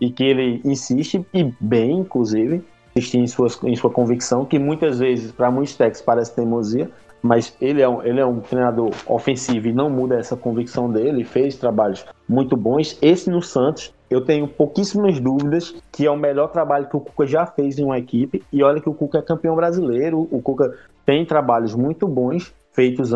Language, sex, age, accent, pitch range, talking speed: Portuguese, male, 20-39, Brazilian, 125-150 Hz, 185 wpm